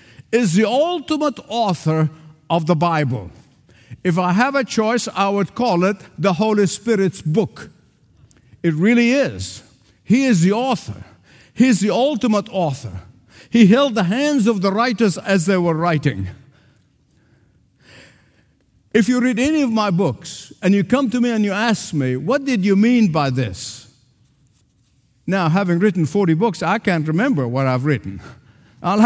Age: 50-69